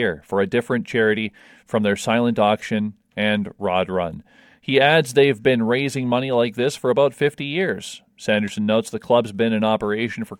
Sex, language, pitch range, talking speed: male, English, 115-140 Hz, 180 wpm